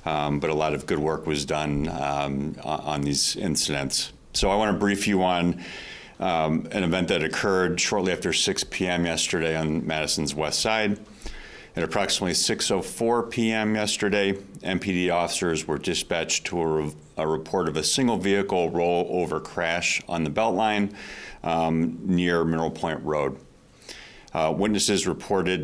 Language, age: English, 40-59